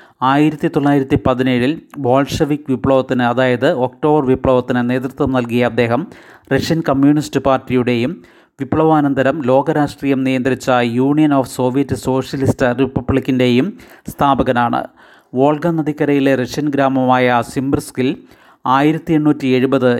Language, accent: Malayalam, native